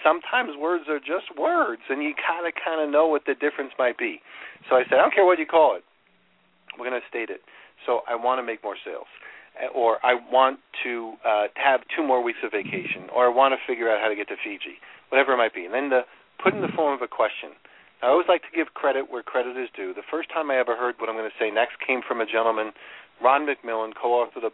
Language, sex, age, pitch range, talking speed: English, male, 40-59, 115-160 Hz, 250 wpm